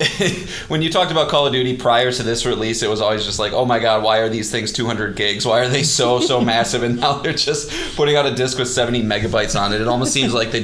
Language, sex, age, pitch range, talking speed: English, male, 20-39, 110-140 Hz, 275 wpm